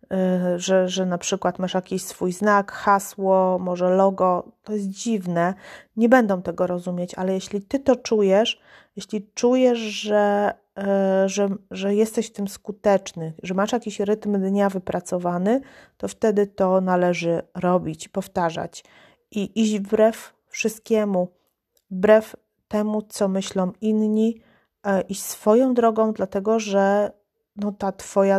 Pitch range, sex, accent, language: 185-215 Hz, female, native, Polish